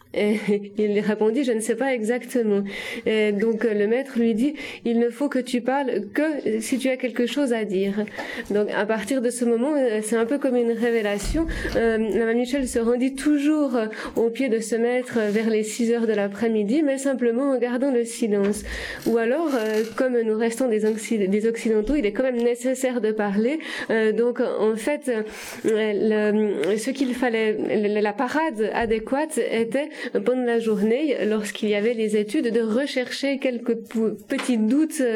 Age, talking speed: 20-39, 180 wpm